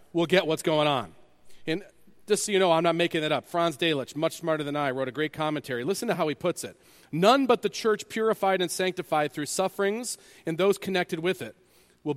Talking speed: 225 wpm